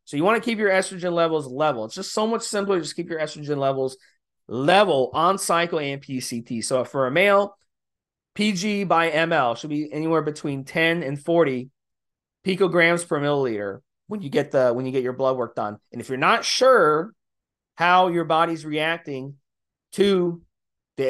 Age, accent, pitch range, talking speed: 30-49, American, 140-175 Hz, 170 wpm